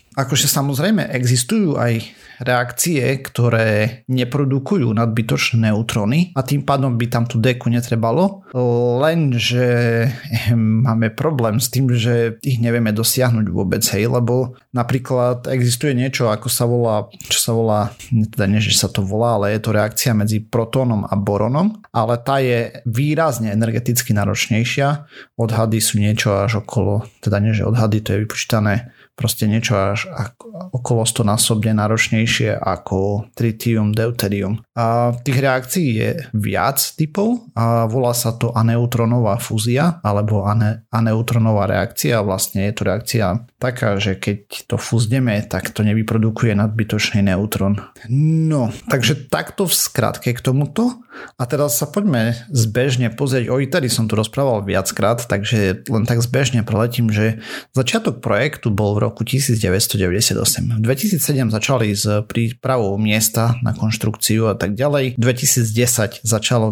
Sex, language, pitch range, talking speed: male, Slovak, 110-130 Hz, 140 wpm